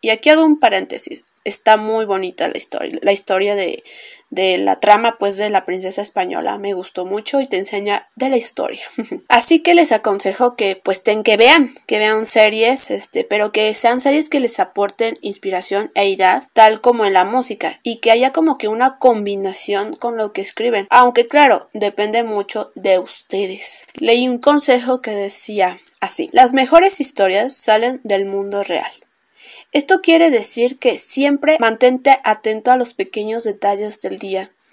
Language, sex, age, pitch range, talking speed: Spanish, female, 20-39, 205-270 Hz, 175 wpm